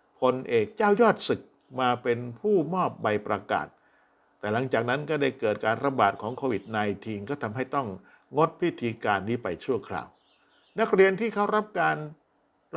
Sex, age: male, 60-79